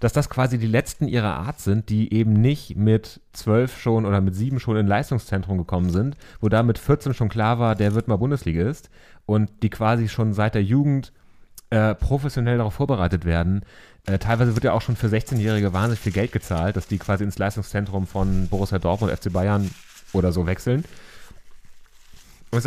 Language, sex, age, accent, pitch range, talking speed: German, male, 30-49, German, 95-115 Hz, 190 wpm